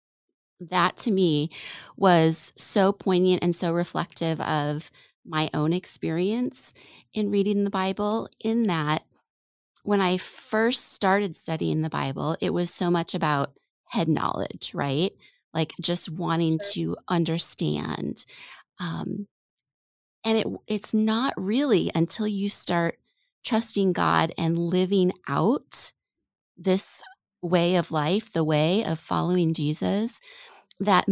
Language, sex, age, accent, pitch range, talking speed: English, female, 30-49, American, 165-215 Hz, 120 wpm